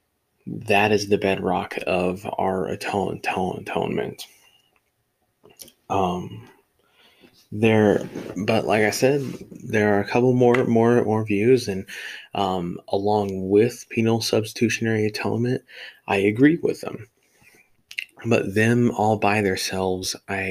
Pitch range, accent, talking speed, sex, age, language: 95-110 Hz, American, 115 wpm, male, 20-39, English